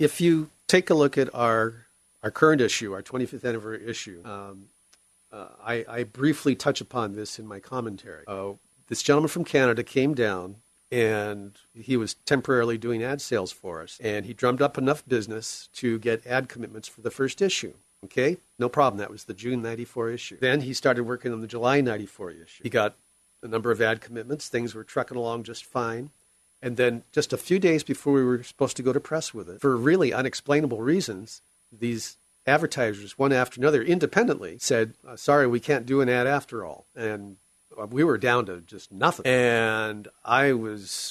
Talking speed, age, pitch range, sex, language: 190 wpm, 50-69, 110-140 Hz, male, English